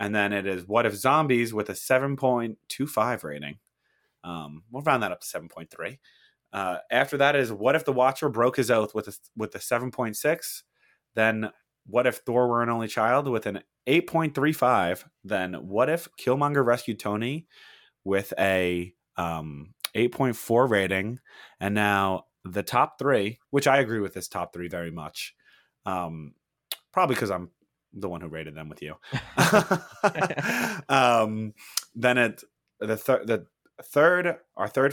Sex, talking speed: male, 150 wpm